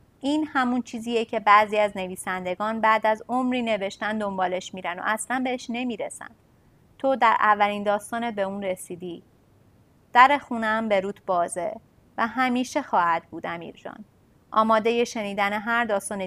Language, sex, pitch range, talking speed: Persian, female, 200-245 Hz, 145 wpm